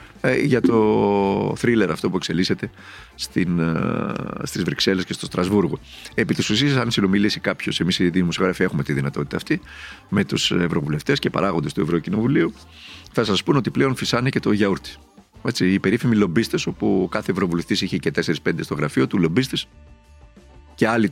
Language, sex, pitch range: Greek, male, 85-125 Hz